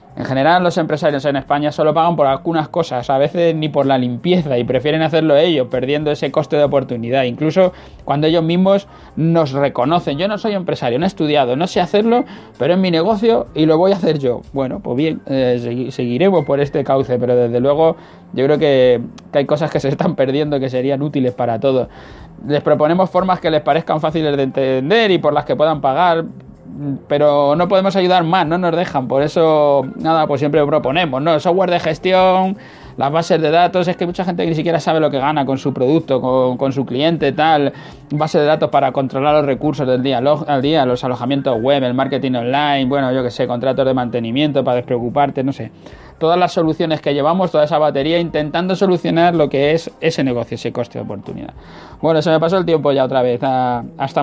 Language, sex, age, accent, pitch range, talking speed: Spanish, male, 20-39, Spanish, 135-160 Hz, 210 wpm